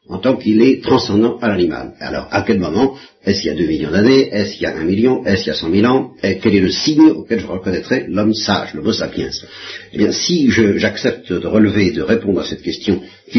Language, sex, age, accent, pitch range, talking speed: French, male, 50-69, French, 95-150 Hz, 260 wpm